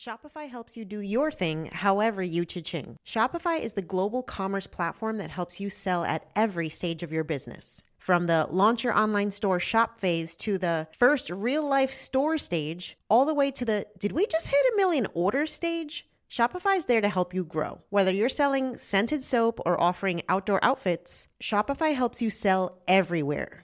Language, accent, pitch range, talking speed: English, American, 185-255 Hz, 190 wpm